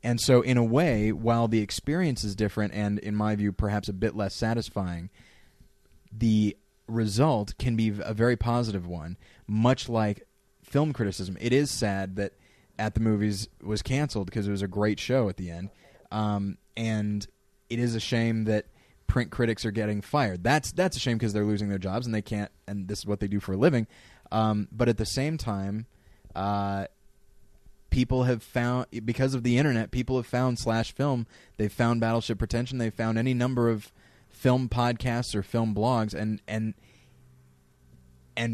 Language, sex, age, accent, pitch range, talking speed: English, male, 20-39, American, 100-120 Hz, 185 wpm